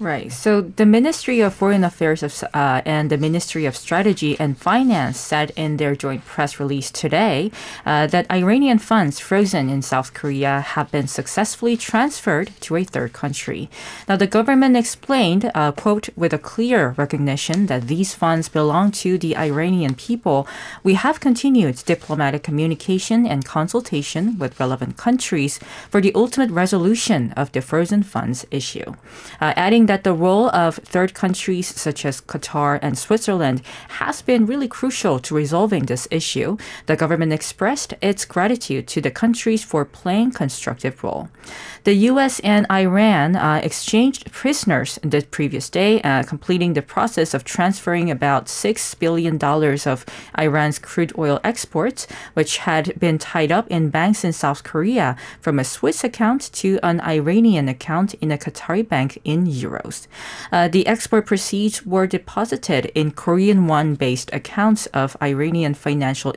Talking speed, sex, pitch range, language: 155 wpm, female, 145-210 Hz, English